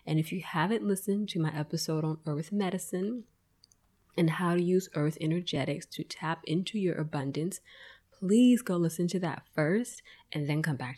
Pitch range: 140-180 Hz